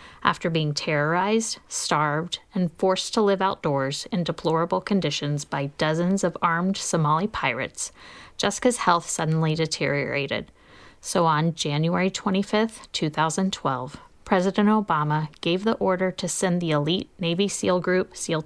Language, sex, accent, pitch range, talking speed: English, female, American, 165-210 Hz, 130 wpm